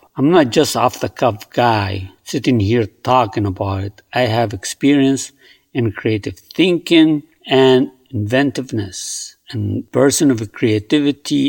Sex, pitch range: male, 110-150 Hz